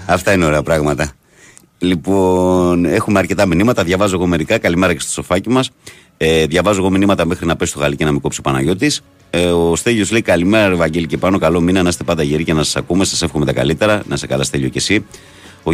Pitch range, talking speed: 75-95 Hz, 225 wpm